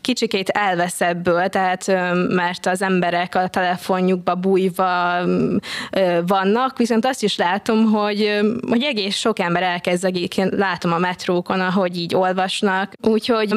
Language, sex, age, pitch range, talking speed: Hungarian, female, 20-39, 185-215 Hz, 120 wpm